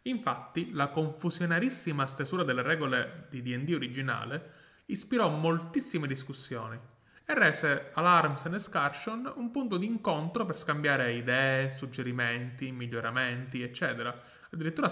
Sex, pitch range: male, 130-175 Hz